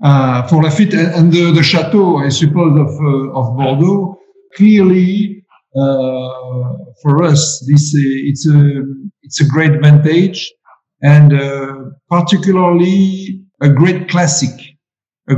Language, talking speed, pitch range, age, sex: English, 130 wpm, 140-180 Hz, 50-69, male